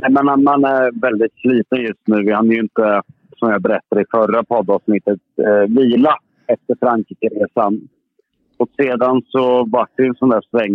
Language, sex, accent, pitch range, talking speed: Swedish, male, Norwegian, 100-125 Hz, 155 wpm